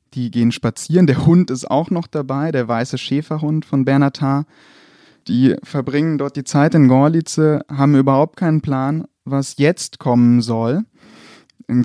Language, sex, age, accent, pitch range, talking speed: German, male, 30-49, German, 125-145 Hz, 150 wpm